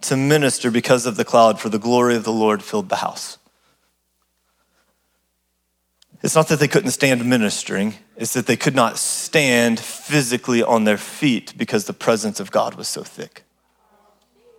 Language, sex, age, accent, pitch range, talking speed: English, male, 30-49, American, 110-155 Hz, 165 wpm